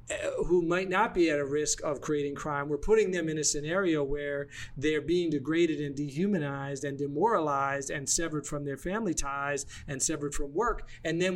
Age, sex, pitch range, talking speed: 40-59, male, 135-165 Hz, 190 wpm